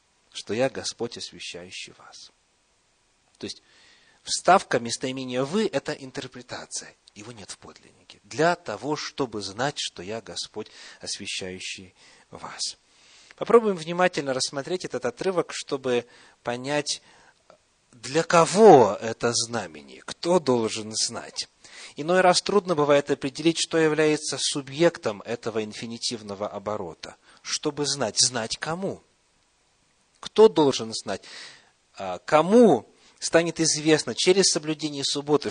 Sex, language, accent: male, Russian, native